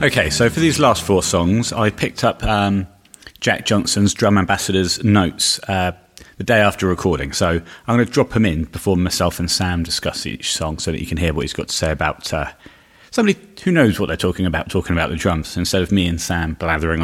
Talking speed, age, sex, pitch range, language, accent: 230 wpm, 30-49, male, 90-110 Hz, English, British